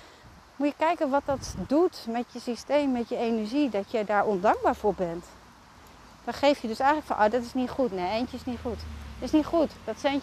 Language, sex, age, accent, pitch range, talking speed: Dutch, female, 30-49, Dutch, 205-270 Hz, 235 wpm